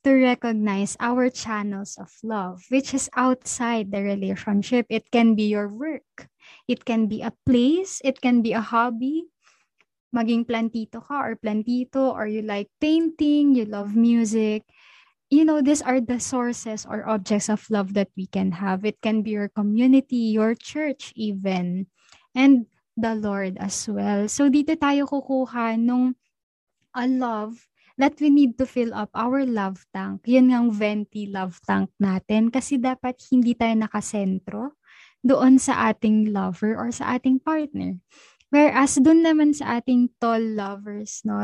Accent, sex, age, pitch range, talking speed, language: native, female, 20-39, 210-255 Hz, 160 wpm, Filipino